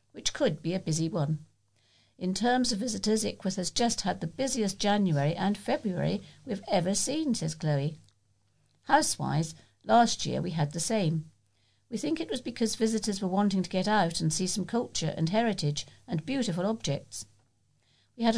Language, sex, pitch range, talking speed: English, female, 145-210 Hz, 175 wpm